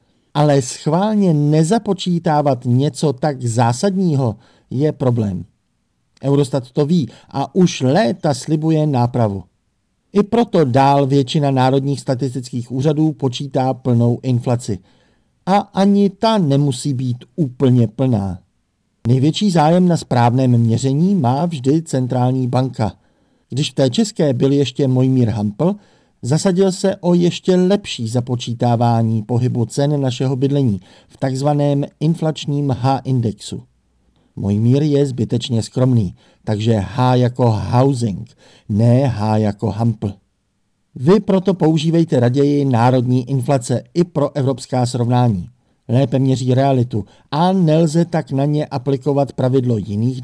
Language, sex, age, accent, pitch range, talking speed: Czech, male, 50-69, native, 120-155 Hz, 115 wpm